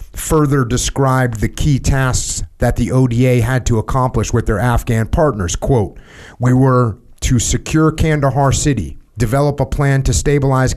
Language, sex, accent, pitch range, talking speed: English, male, American, 110-130 Hz, 150 wpm